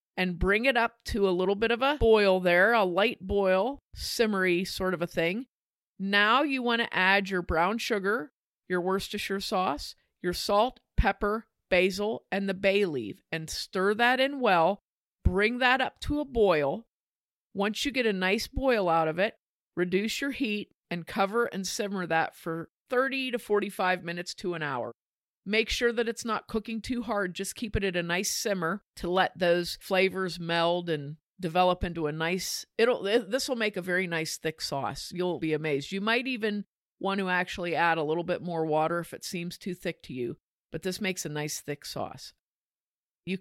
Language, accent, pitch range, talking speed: English, American, 175-225 Hz, 195 wpm